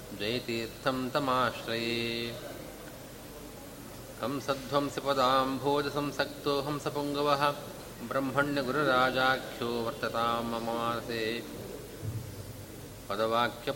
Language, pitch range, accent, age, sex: Kannada, 115-140 Hz, native, 30-49, male